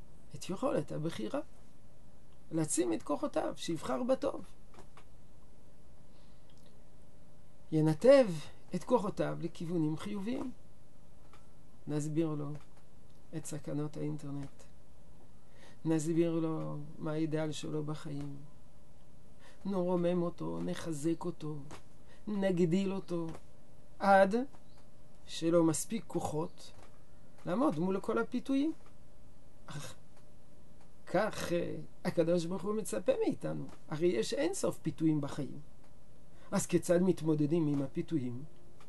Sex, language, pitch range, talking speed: male, Hebrew, 150-195 Hz, 85 wpm